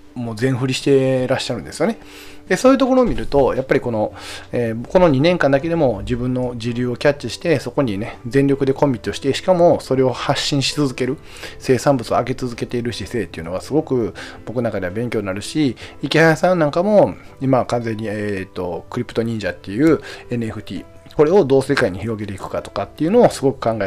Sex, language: male, Japanese